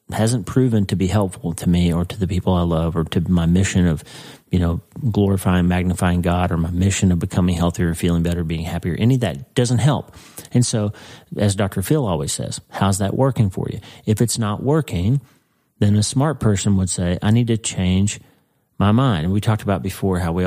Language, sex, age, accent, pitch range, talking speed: English, male, 40-59, American, 90-115 Hz, 215 wpm